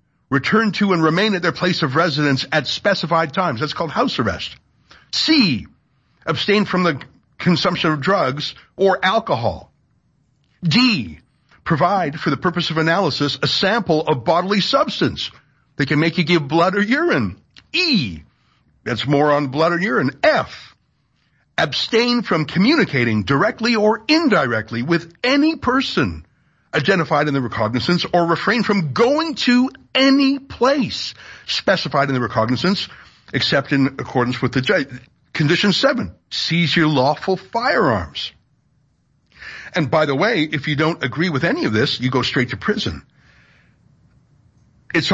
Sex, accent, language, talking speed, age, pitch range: male, American, English, 140 wpm, 60-79, 145-200 Hz